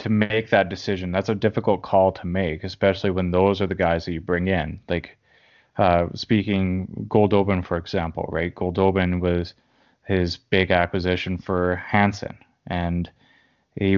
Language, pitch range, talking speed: English, 90-105 Hz, 155 wpm